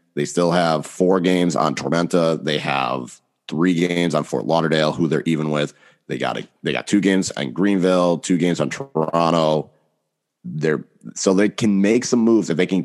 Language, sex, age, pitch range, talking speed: English, male, 30-49, 75-95 Hz, 190 wpm